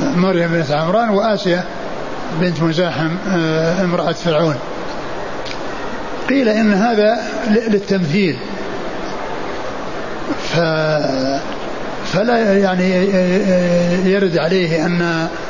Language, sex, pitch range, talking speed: Arabic, male, 165-190 Hz, 70 wpm